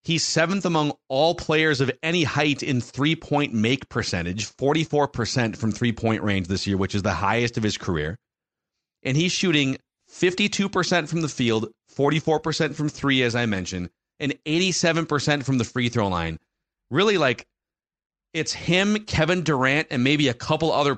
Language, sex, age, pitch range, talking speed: English, male, 40-59, 110-145 Hz, 155 wpm